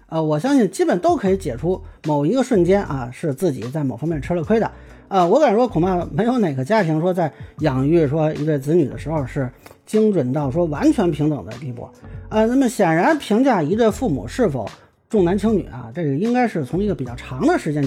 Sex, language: male, Chinese